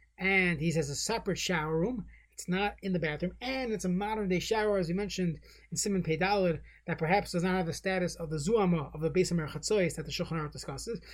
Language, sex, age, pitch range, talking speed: English, male, 30-49, 165-205 Hz, 230 wpm